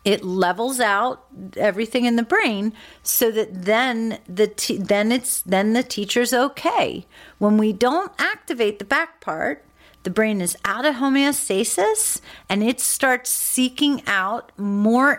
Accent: American